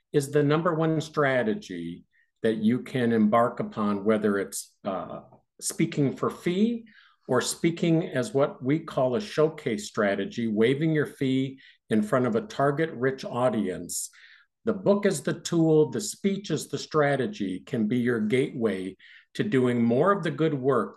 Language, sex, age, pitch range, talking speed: English, male, 50-69, 120-190 Hz, 160 wpm